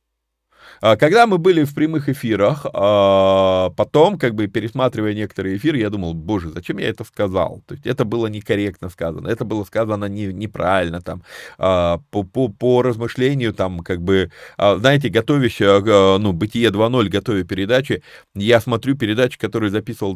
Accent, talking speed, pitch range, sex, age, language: native, 150 wpm, 95-120 Hz, male, 30-49, Russian